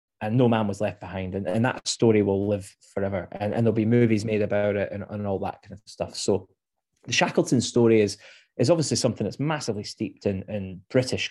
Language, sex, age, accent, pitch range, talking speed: English, male, 20-39, British, 100-120 Hz, 225 wpm